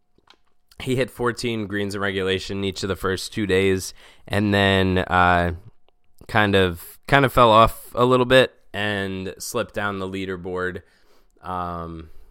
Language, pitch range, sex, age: English, 90-110 Hz, male, 20-39